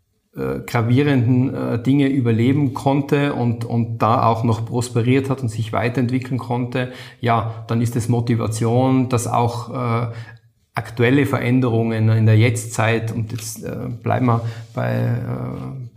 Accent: German